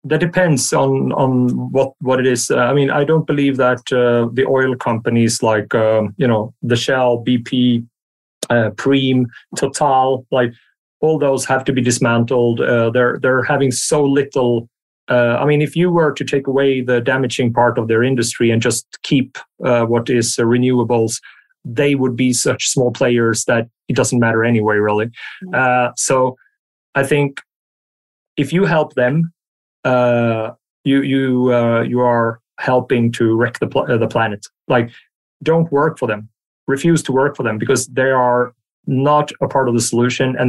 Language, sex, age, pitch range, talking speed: English, male, 30-49, 115-135 Hz, 175 wpm